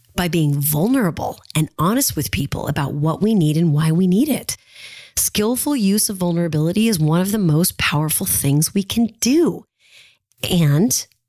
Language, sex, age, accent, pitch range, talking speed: English, female, 30-49, American, 145-195 Hz, 165 wpm